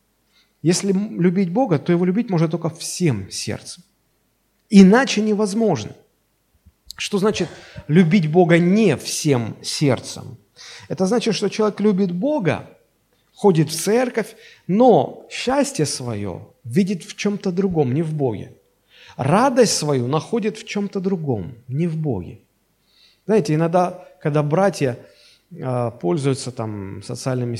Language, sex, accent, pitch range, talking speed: Russian, male, native, 125-190 Hz, 115 wpm